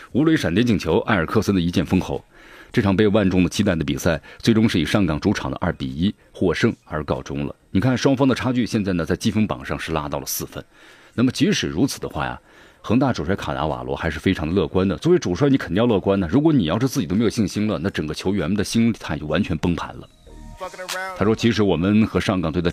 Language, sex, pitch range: Chinese, male, 80-110 Hz